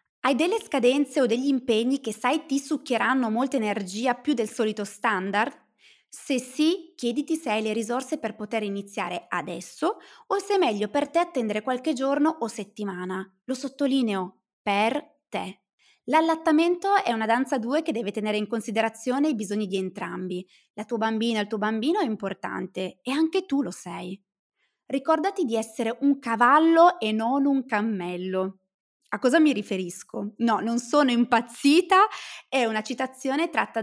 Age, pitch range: 20-39, 205-290 Hz